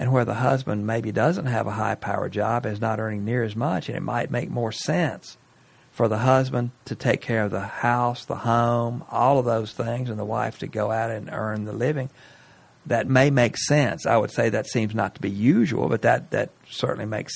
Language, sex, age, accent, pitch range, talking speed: English, male, 50-69, American, 105-125 Hz, 230 wpm